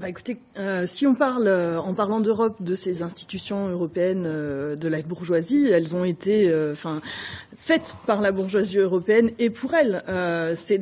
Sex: female